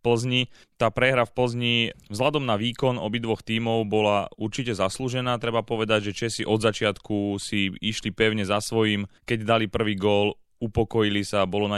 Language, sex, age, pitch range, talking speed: Slovak, male, 30-49, 100-115 Hz, 165 wpm